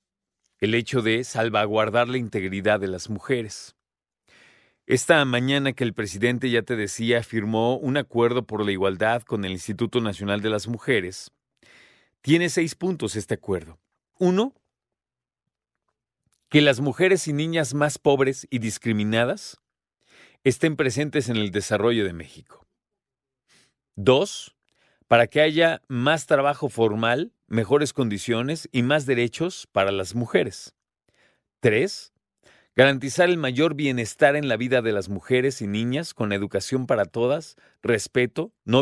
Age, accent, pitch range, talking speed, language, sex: 40-59, Mexican, 110-140 Hz, 135 wpm, Spanish, male